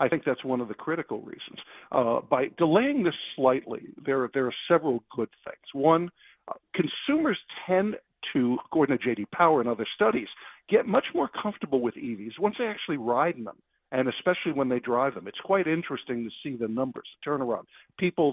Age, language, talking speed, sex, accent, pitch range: 50-69, English, 190 wpm, male, American, 125-170 Hz